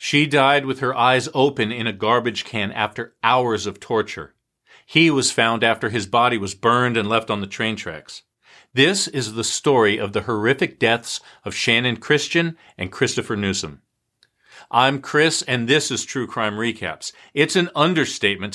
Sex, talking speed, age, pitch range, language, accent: male, 170 wpm, 40-59, 105-135 Hz, English, American